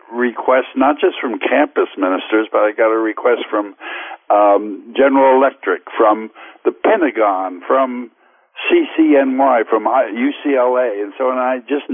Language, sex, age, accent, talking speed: English, male, 60-79, American, 135 wpm